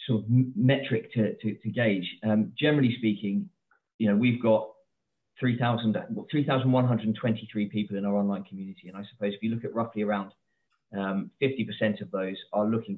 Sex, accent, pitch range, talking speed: male, British, 100-120 Hz, 170 wpm